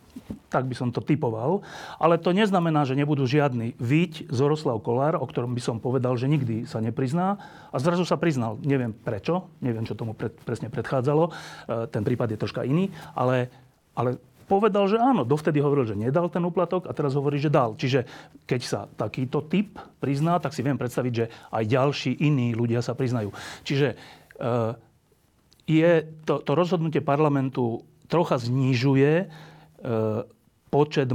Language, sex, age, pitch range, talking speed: Slovak, male, 40-59, 120-150 Hz, 160 wpm